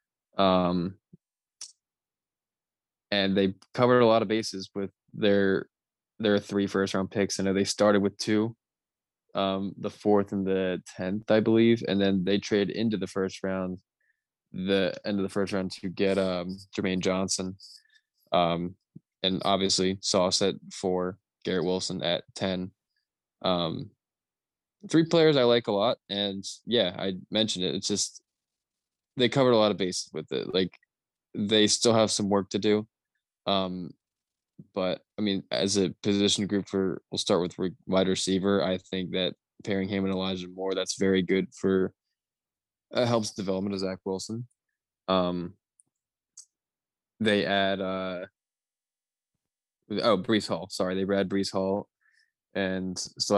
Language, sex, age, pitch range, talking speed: English, male, 20-39, 95-105 Hz, 150 wpm